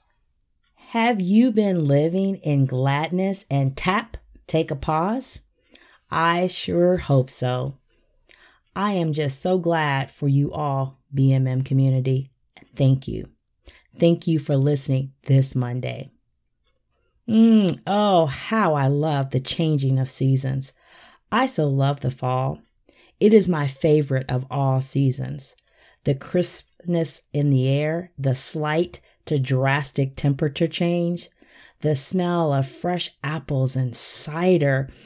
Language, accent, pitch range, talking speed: English, American, 135-170 Hz, 125 wpm